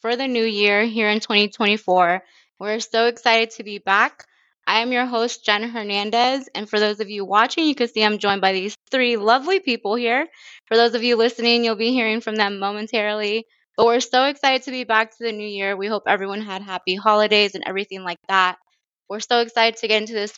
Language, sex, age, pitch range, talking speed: English, female, 20-39, 195-225 Hz, 220 wpm